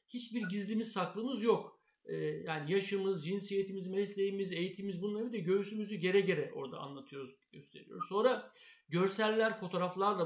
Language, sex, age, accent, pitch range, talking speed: Turkish, male, 60-79, native, 165-225 Hz, 125 wpm